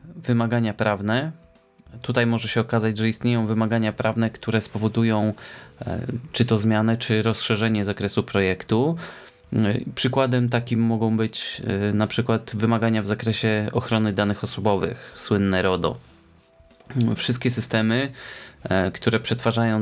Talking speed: 110 wpm